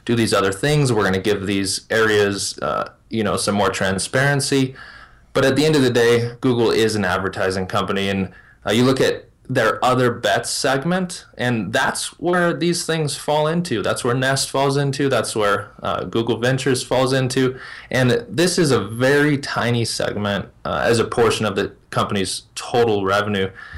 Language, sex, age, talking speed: English, male, 20-39, 180 wpm